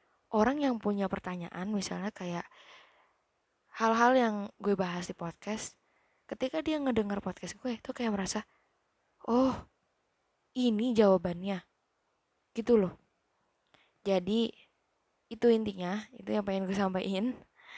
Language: Indonesian